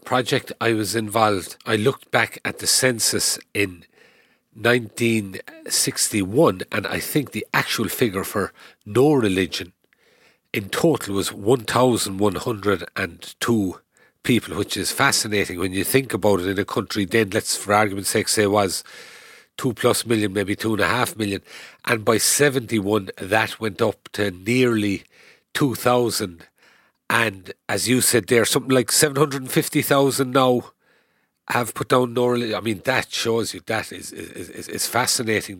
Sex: male